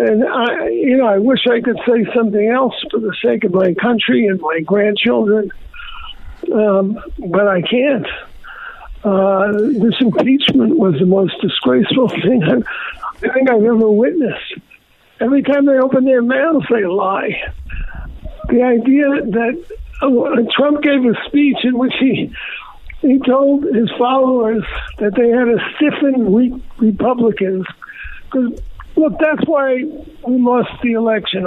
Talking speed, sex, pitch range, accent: 135 wpm, male, 215-265 Hz, American